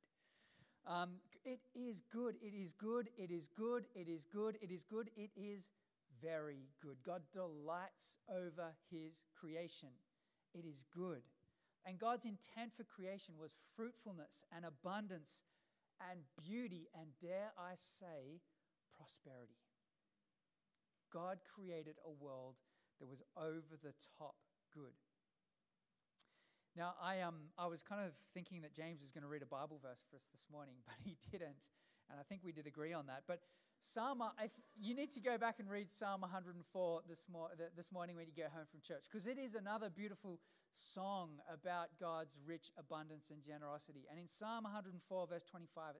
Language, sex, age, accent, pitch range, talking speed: English, male, 40-59, Australian, 155-195 Hz, 165 wpm